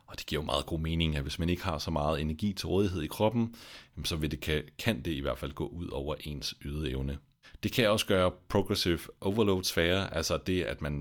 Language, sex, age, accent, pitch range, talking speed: Danish, male, 30-49, native, 75-100 Hz, 225 wpm